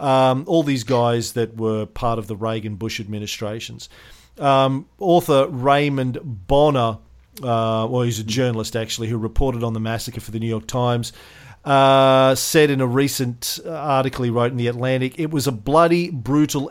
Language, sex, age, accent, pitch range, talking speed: English, male, 40-59, Australian, 120-150 Hz, 170 wpm